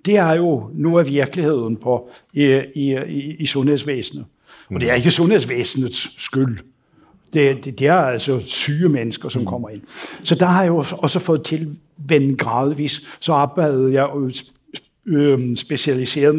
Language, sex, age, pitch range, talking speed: Danish, male, 60-79, 135-160 Hz, 155 wpm